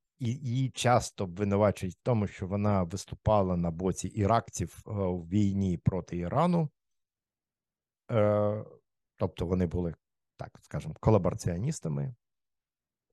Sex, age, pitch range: male, 50-69, 90-115 Hz